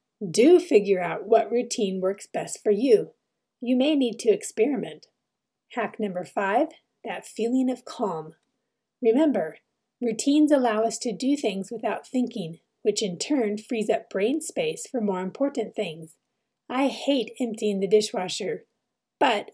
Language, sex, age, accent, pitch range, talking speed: English, female, 30-49, American, 210-255 Hz, 145 wpm